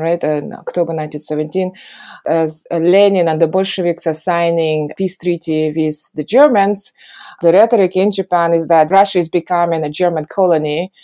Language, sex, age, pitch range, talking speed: English, female, 20-39, 155-185 Hz, 160 wpm